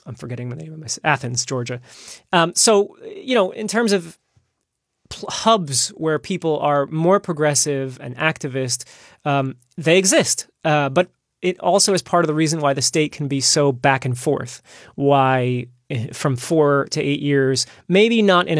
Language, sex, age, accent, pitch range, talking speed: English, male, 30-49, American, 130-160 Hz, 170 wpm